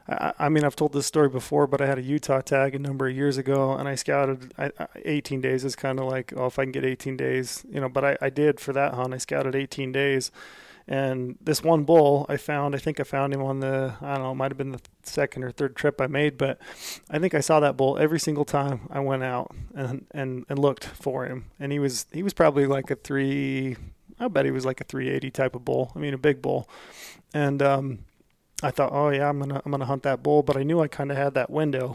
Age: 20-39